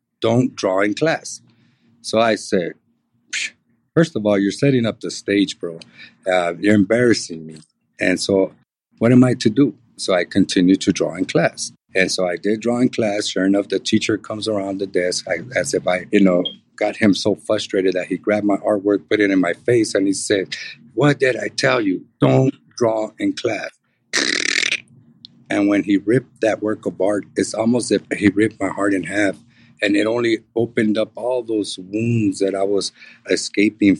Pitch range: 95-115 Hz